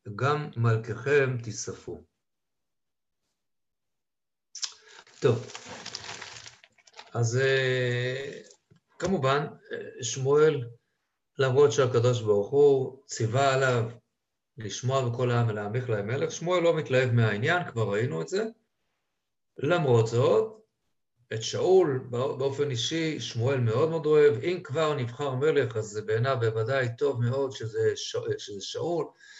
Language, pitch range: Hebrew, 115-155 Hz